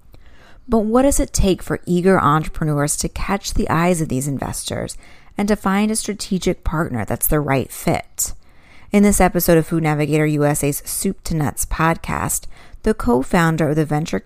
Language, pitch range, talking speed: English, 145-195 Hz, 175 wpm